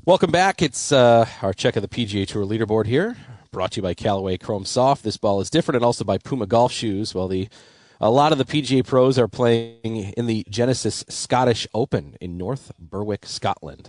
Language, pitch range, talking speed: English, 105-130 Hz, 205 wpm